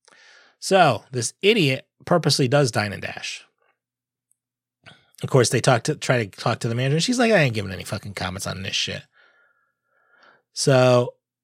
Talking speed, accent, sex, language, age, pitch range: 165 wpm, American, male, English, 30-49, 115-150 Hz